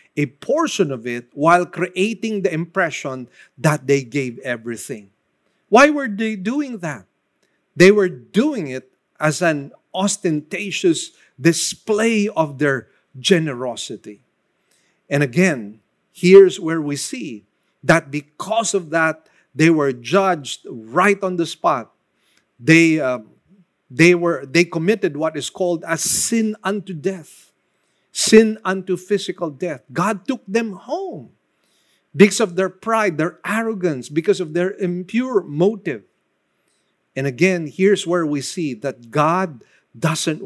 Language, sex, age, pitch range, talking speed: English, male, 50-69, 145-200 Hz, 130 wpm